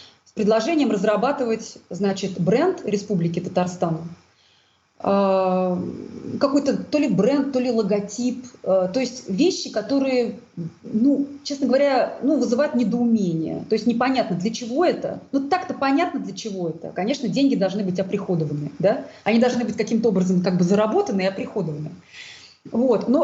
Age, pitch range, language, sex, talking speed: 30-49, 185-245 Hz, Russian, female, 125 wpm